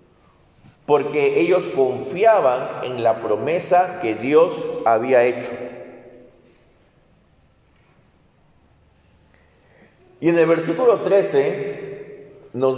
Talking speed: 75 wpm